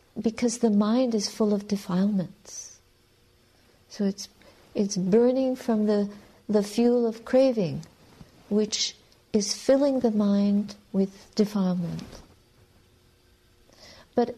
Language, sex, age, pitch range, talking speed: English, female, 50-69, 180-220 Hz, 105 wpm